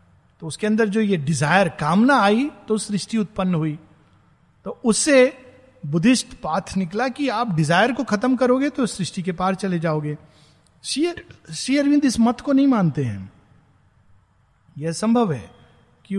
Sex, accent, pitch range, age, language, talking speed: male, native, 155-230 Hz, 50-69, Hindi, 145 wpm